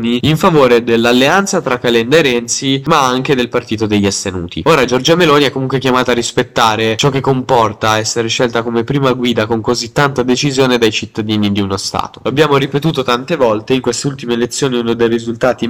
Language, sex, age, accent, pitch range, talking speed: Italian, male, 10-29, native, 115-135 Hz, 185 wpm